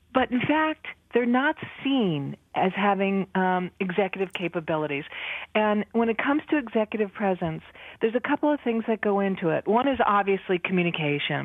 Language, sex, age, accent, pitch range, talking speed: English, female, 50-69, American, 185-240 Hz, 160 wpm